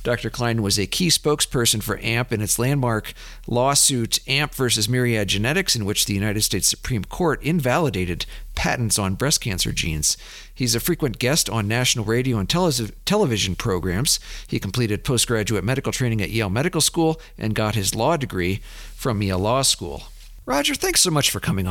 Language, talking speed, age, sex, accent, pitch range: English, 175 wpm, 50-69, male, American, 105-135 Hz